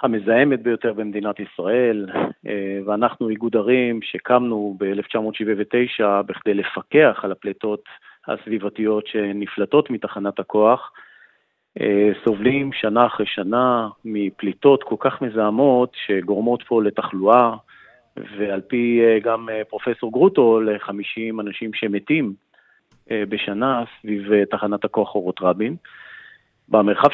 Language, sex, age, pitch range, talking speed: Hebrew, male, 40-59, 105-125 Hz, 95 wpm